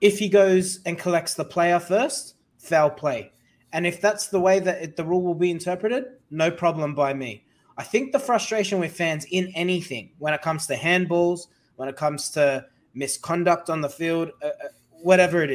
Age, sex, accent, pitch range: 20-39, male, Australian, 150-185 Hz